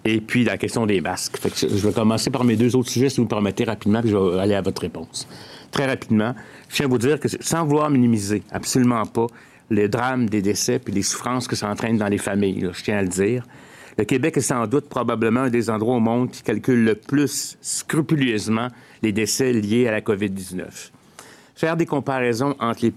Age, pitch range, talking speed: 60-79, 105-135 Hz, 225 wpm